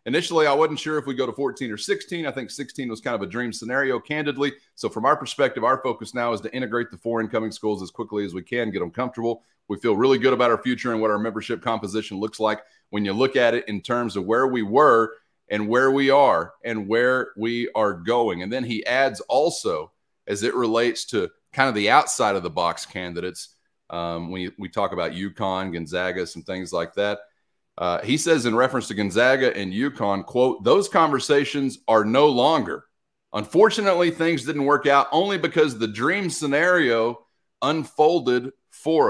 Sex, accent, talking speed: male, American, 205 wpm